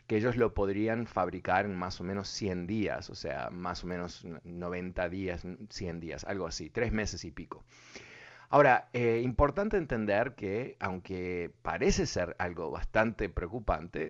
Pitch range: 90-110 Hz